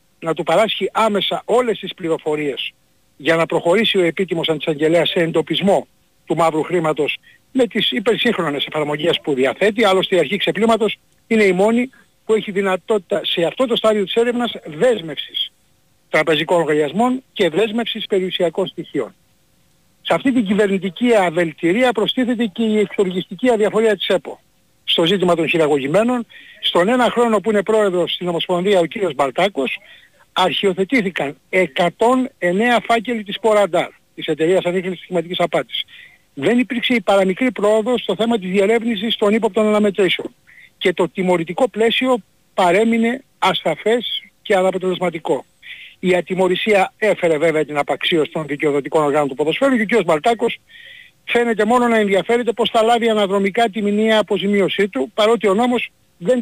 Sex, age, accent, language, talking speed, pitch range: male, 60-79, native, Greek, 145 wpm, 170-230 Hz